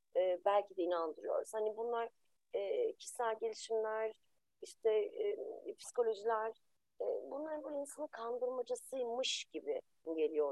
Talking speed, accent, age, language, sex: 105 wpm, native, 30-49, Turkish, female